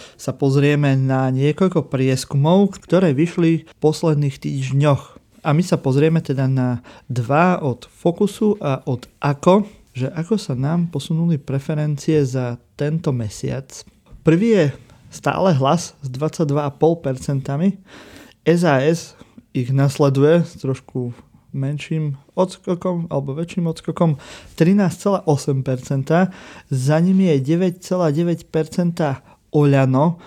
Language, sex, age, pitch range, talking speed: Slovak, male, 30-49, 135-170 Hz, 105 wpm